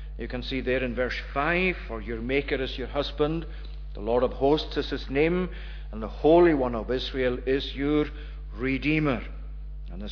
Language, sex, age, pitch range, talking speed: English, male, 50-69, 120-150 Hz, 185 wpm